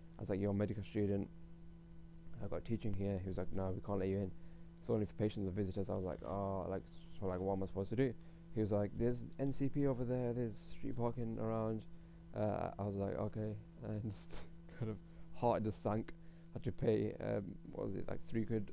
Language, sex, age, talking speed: English, male, 20-39, 230 wpm